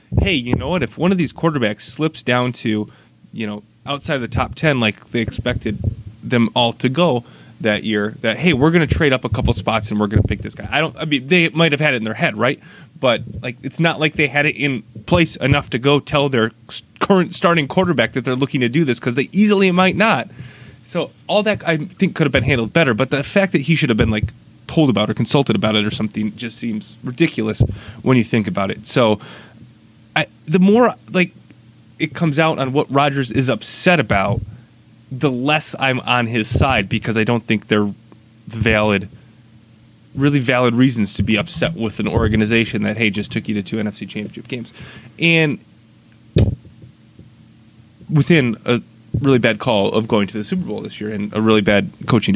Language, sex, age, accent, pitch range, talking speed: English, male, 30-49, American, 110-145 Hz, 215 wpm